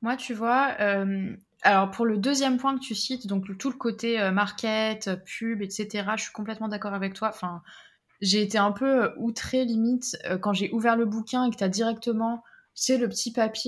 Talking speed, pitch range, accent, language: 225 wpm, 205-240 Hz, French, French